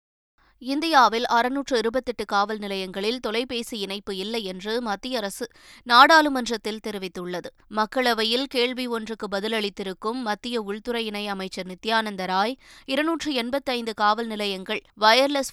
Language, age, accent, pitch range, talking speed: Tamil, 20-39, native, 200-235 Hz, 105 wpm